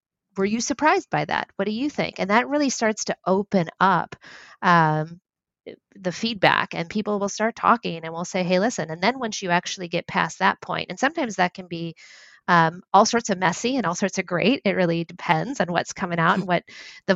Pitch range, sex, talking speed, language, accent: 170-220 Hz, female, 220 wpm, English, American